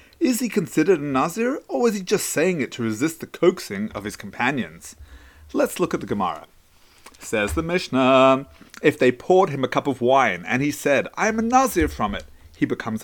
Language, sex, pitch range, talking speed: English, male, 140-230 Hz, 205 wpm